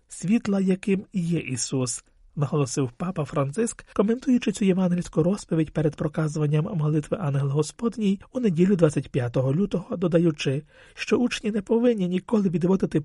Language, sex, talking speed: Ukrainian, male, 125 wpm